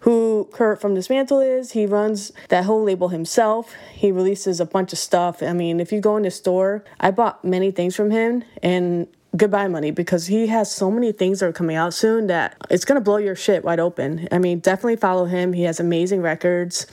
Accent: American